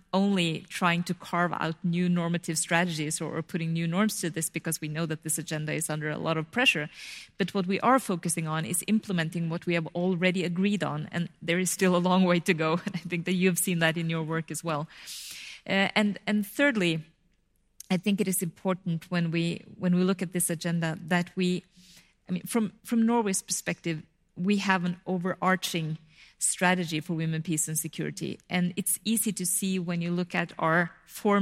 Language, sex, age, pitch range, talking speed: English, female, 30-49, 165-190 Hz, 205 wpm